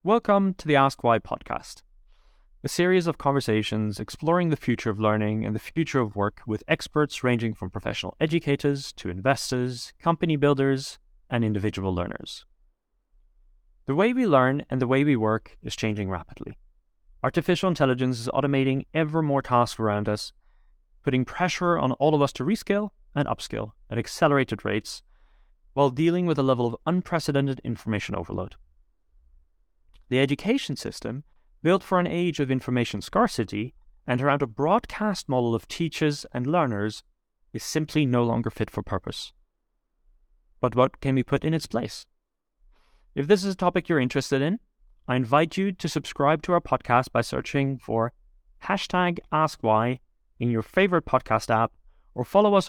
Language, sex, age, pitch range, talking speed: English, male, 20-39, 105-155 Hz, 160 wpm